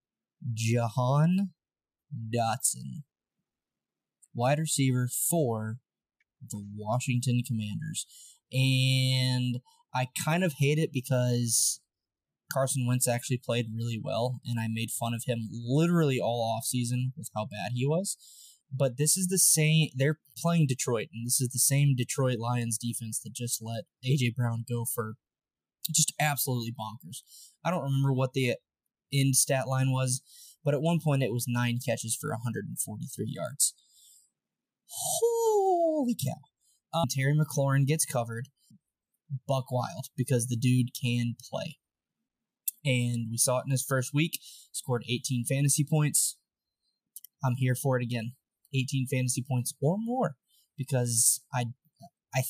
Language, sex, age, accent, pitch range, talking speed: English, male, 20-39, American, 120-150 Hz, 135 wpm